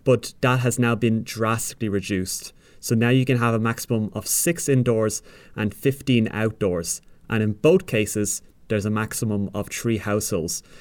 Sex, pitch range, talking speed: male, 105-135 Hz, 165 wpm